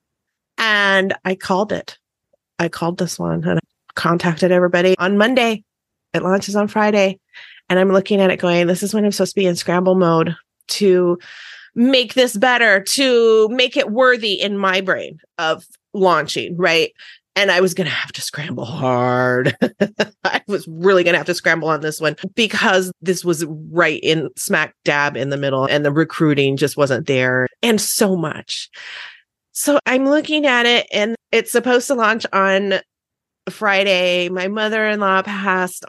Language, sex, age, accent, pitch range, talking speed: English, female, 30-49, American, 180-225 Hz, 170 wpm